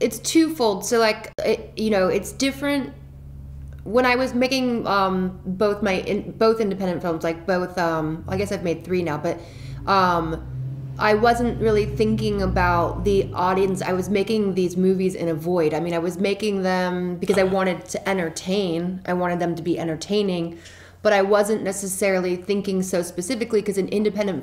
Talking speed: 180 wpm